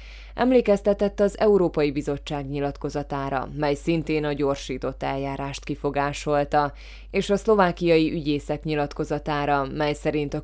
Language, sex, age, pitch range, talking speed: Hungarian, female, 20-39, 145-165 Hz, 110 wpm